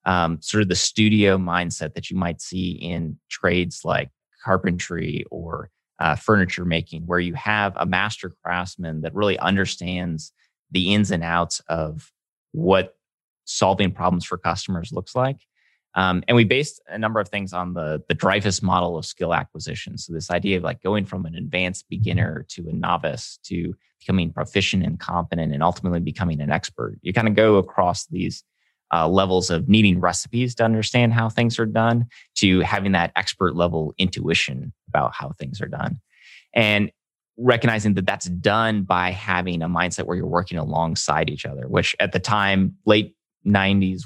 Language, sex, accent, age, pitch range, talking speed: English, male, American, 20-39, 90-105 Hz, 175 wpm